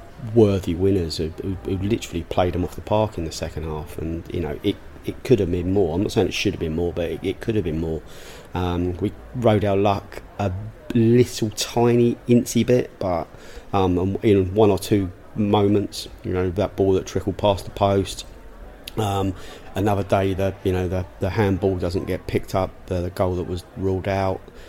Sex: male